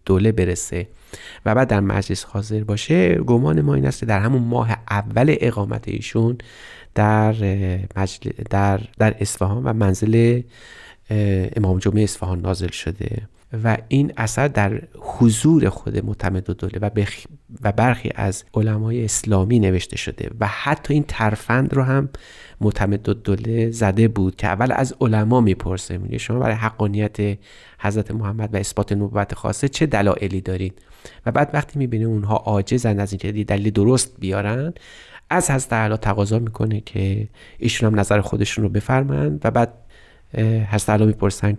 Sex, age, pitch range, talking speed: male, 30-49, 100-115 Hz, 150 wpm